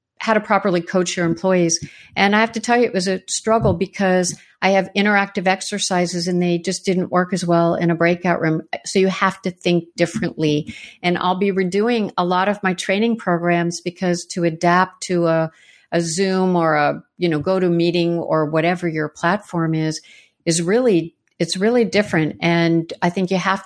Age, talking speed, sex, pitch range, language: 50-69, 195 wpm, female, 170-190 Hz, English